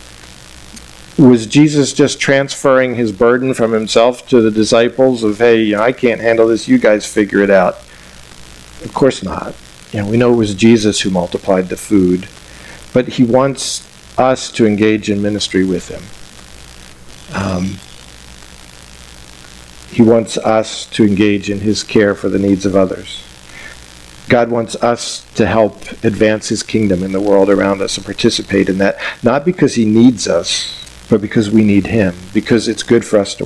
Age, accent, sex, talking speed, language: 50-69, American, male, 165 wpm, English